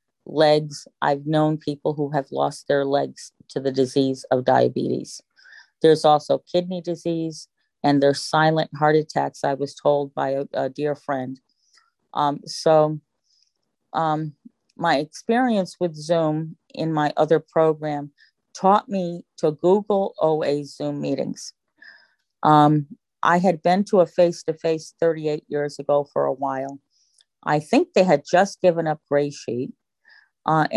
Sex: female